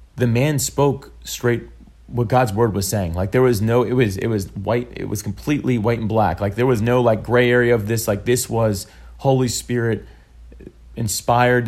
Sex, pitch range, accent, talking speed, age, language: male, 100-120 Hz, American, 200 wpm, 30-49, English